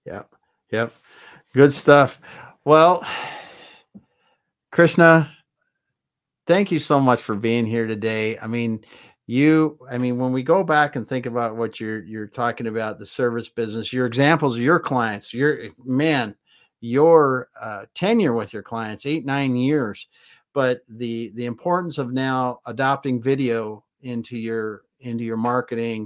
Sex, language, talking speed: male, English, 145 wpm